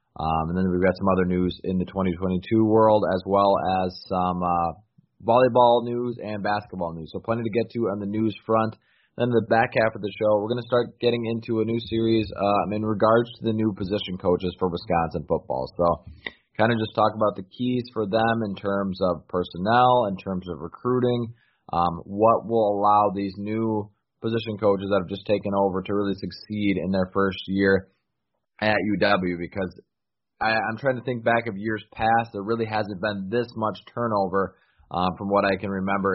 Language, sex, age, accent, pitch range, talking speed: English, male, 20-39, American, 95-110 Hz, 200 wpm